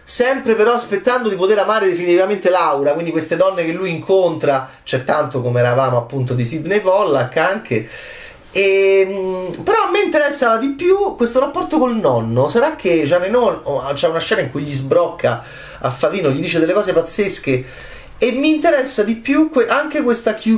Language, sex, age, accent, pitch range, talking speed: Italian, male, 30-49, native, 145-235 Hz, 180 wpm